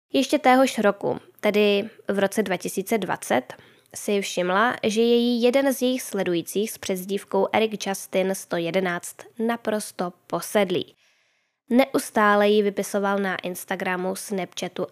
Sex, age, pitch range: female, 10-29, 190-225 Hz